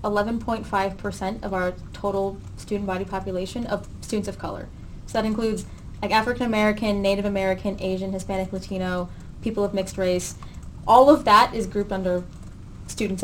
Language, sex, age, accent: English, female, 10-29, American